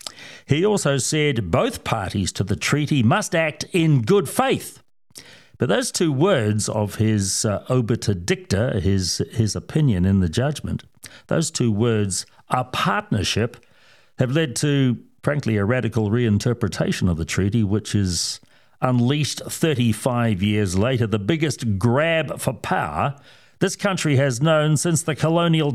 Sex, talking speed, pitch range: male, 140 wpm, 110-155 Hz